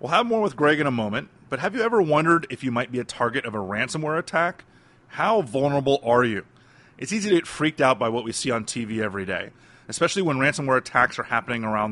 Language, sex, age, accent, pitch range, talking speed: English, male, 30-49, American, 115-155 Hz, 240 wpm